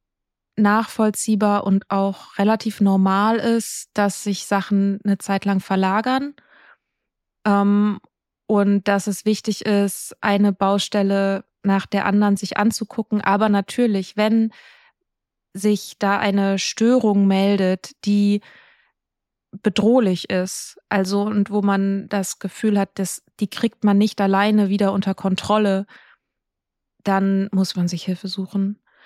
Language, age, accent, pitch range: German, 20-39, German, 195-210 Hz